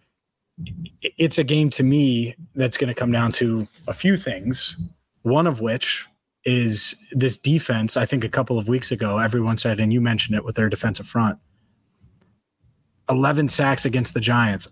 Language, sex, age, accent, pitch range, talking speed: English, male, 30-49, American, 115-135 Hz, 170 wpm